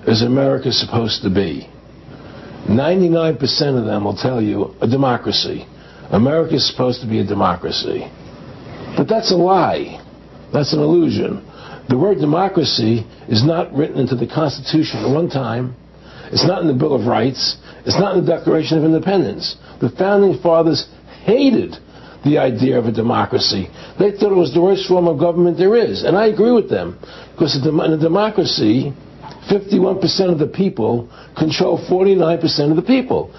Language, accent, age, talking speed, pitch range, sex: English, American, 60-79, 165 wpm, 140-185 Hz, male